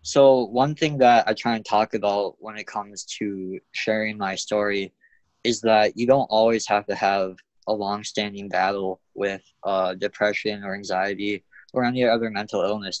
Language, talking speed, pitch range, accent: English, 170 wpm, 95-115 Hz, American